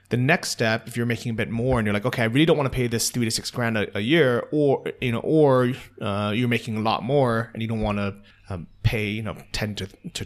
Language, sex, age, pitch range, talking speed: English, male, 30-49, 105-120 Hz, 285 wpm